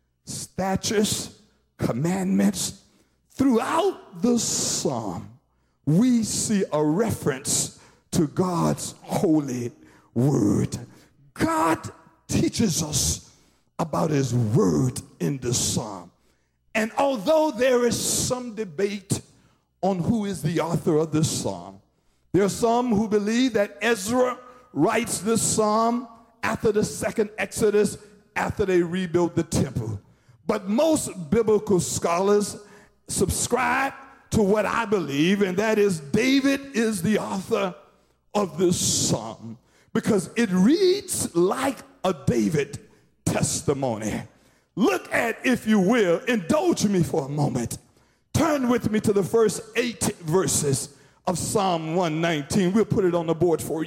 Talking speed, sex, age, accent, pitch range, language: 120 wpm, male, 50-69, American, 155-225 Hz, English